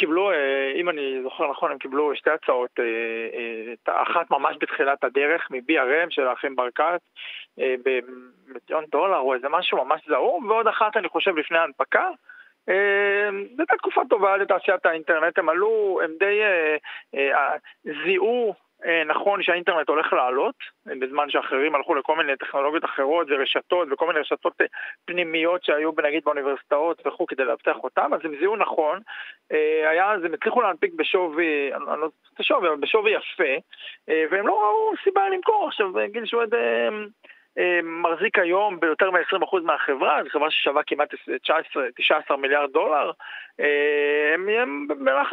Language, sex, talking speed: Hebrew, male, 140 wpm